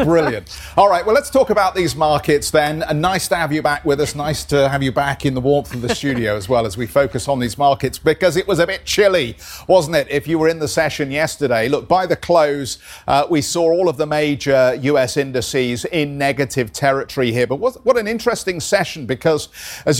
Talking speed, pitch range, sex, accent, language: 230 wpm, 130-170 Hz, male, British, English